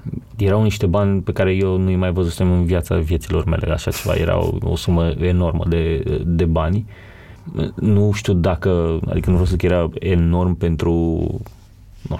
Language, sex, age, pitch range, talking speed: Romanian, male, 30-49, 85-105 Hz, 170 wpm